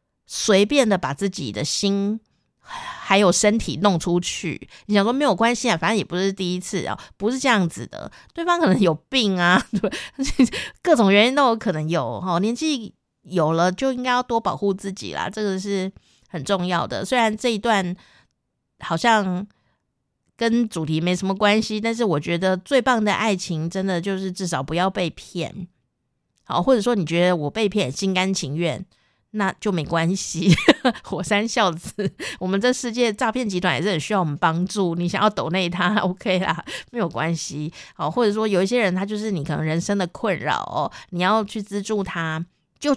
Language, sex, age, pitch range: Chinese, female, 50-69, 175-225 Hz